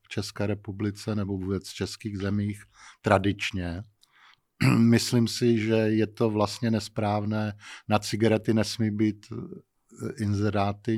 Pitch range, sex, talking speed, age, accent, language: 100-115 Hz, male, 110 wpm, 50-69, native, Czech